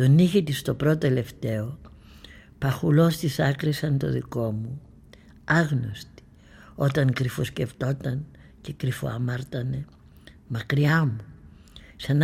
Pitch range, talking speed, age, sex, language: 115-145 Hz, 105 wpm, 60-79, female, Greek